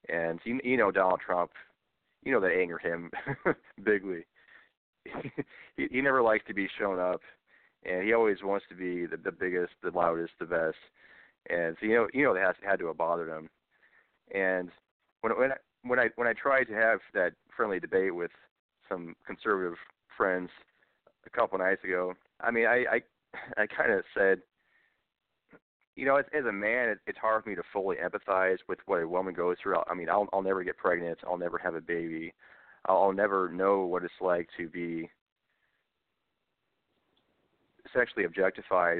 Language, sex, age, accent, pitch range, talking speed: English, male, 30-49, American, 85-105 Hz, 185 wpm